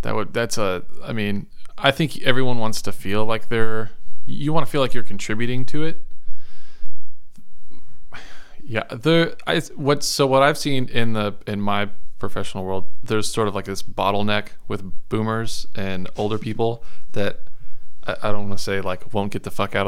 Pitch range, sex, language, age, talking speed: 100-115 Hz, male, English, 20-39, 185 wpm